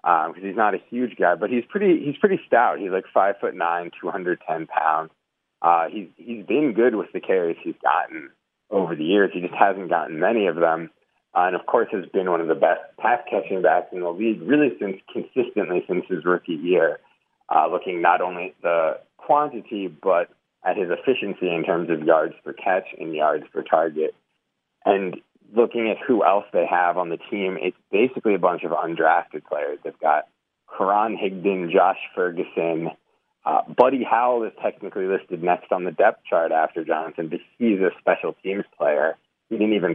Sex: male